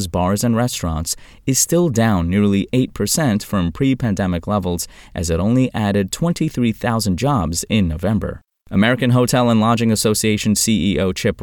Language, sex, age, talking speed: English, male, 20-39, 135 wpm